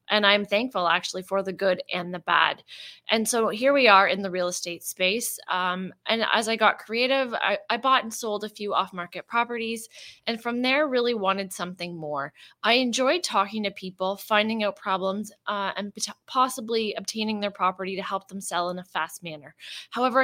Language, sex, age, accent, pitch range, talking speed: English, female, 20-39, American, 185-225 Hz, 195 wpm